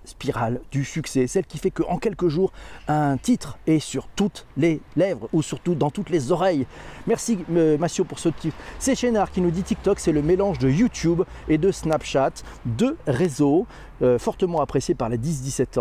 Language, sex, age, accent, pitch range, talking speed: French, male, 40-59, French, 135-180 Hz, 190 wpm